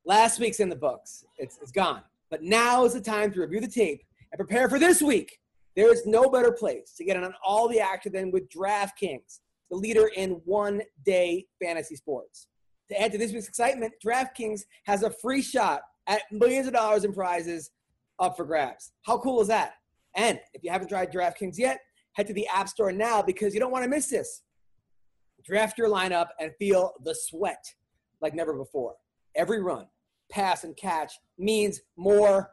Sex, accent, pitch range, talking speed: male, American, 190-230 Hz, 195 wpm